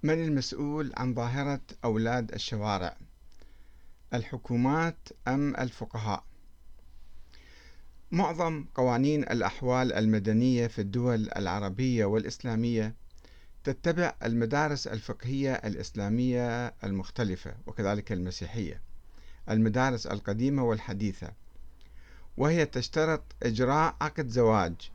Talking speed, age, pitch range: 75 wpm, 50-69, 95-130 Hz